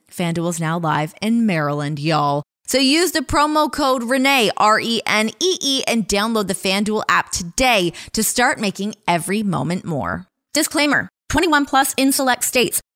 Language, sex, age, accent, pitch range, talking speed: English, female, 20-39, American, 175-245 Hz, 150 wpm